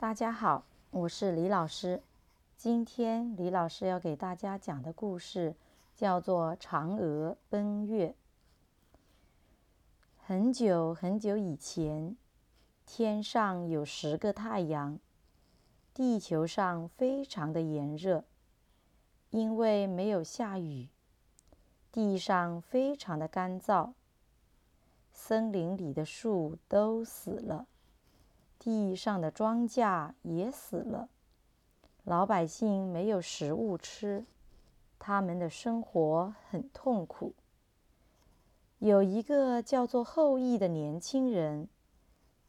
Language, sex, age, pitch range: Chinese, female, 30-49, 165-225 Hz